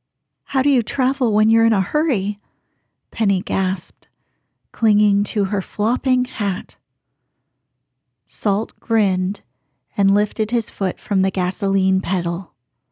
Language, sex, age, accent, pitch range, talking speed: English, female, 40-59, American, 180-220 Hz, 120 wpm